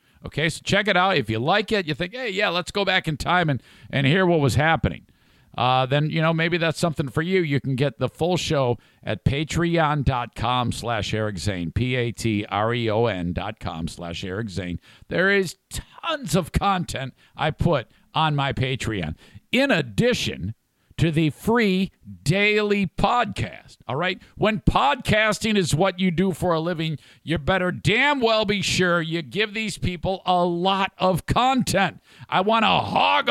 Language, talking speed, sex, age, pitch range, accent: English, 165 wpm, male, 50-69, 130-185 Hz, American